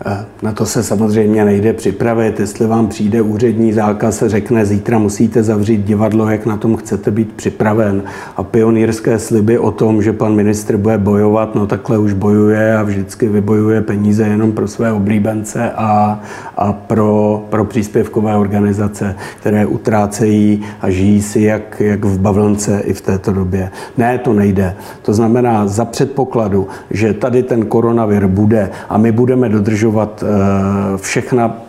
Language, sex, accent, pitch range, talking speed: Czech, male, native, 105-115 Hz, 150 wpm